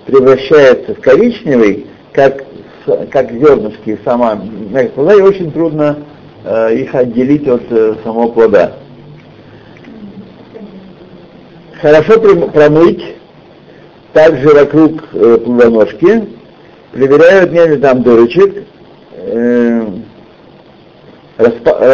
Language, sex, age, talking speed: Russian, male, 60-79, 80 wpm